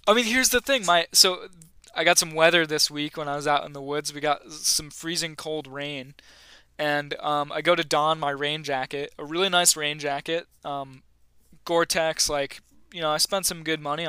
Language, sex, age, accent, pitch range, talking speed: English, male, 20-39, American, 140-170 Hz, 215 wpm